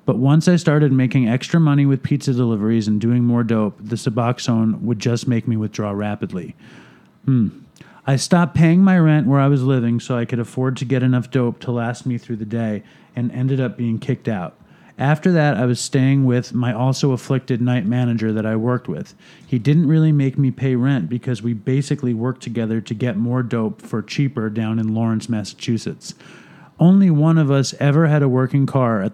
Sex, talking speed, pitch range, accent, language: male, 205 wpm, 115-140 Hz, American, English